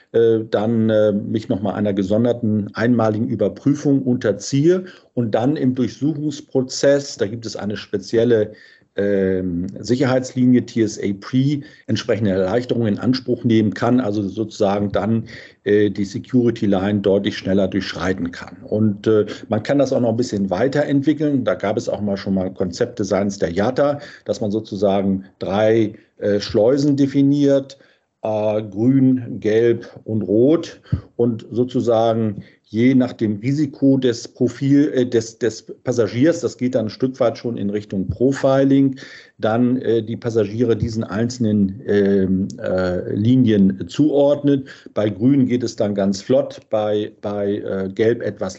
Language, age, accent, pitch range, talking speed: German, 50-69, German, 105-130 Hz, 145 wpm